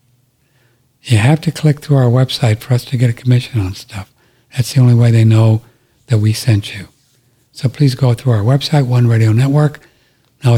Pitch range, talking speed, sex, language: 115-135 Hz, 200 wpm, male, English